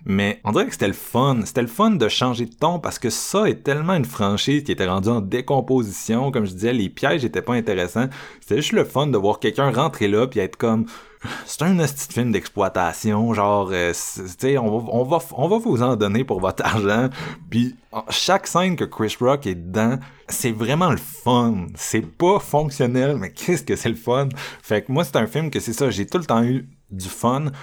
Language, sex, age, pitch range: French, male, 30-49, 100-135 Hz